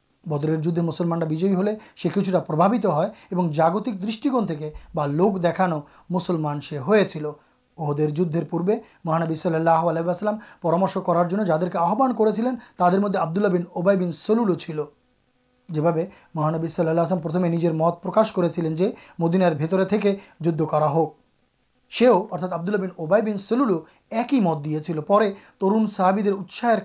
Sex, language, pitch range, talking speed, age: male, Urdu, 160-195 Hz, 145 wpm, 30-49